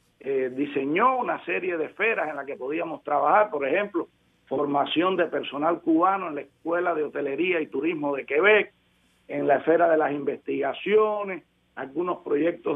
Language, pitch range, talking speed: Spanish, 150-200 Hz, 160 wpm